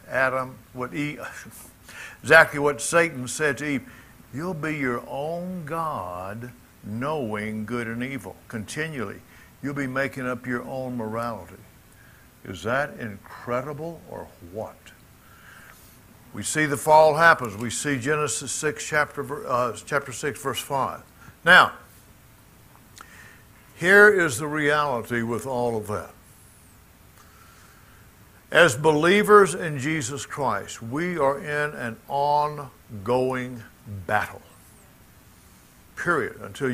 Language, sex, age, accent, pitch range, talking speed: English, male, 60-79, American, 115-155 Hz, 110 wpm